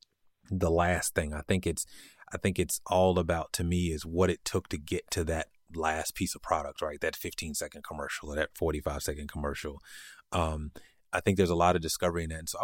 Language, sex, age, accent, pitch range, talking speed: English, male, 30-49, American, 80-95 Hz, 225 wpm